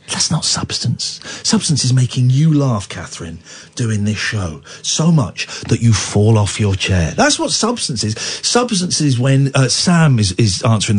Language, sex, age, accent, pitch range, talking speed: English, male, 50-69, British, 125-210 Hz, 175 wpm